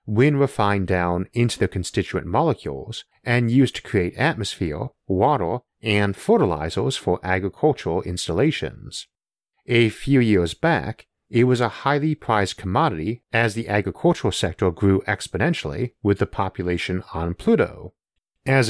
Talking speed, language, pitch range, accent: 130 wpm, English, 95-125 Hz, American